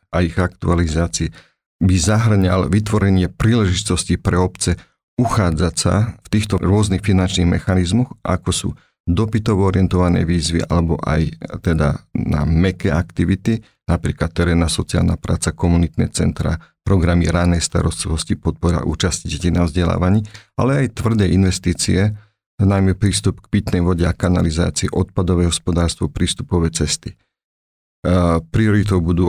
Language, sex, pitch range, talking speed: Slovak, male, 85-100 Hz, 115 wpm